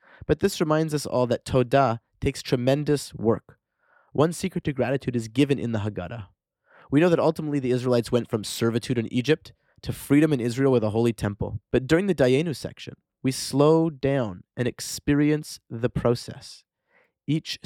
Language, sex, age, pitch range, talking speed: English, male, 30-49, 110-135 Hz, 175 wpm